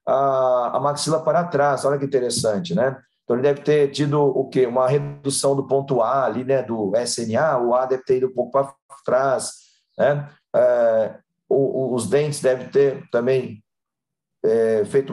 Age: 40-59